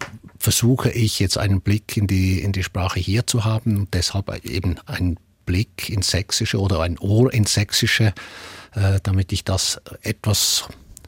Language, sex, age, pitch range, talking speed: German, male, 50-69, 100-120 Hz, 160 wpm